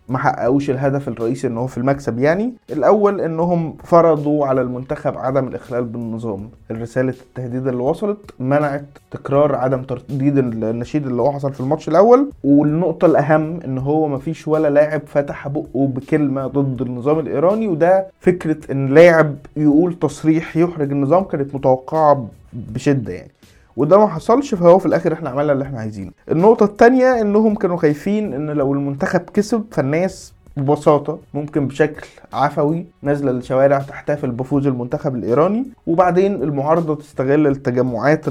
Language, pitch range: Arabic, 130-160 Hz